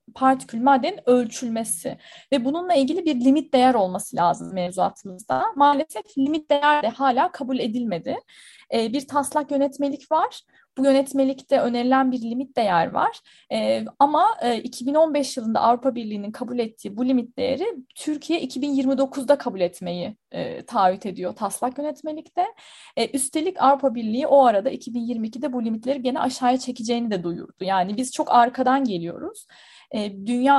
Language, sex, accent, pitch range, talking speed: Turkish, female, native, 225-275 Hz, 130 wpm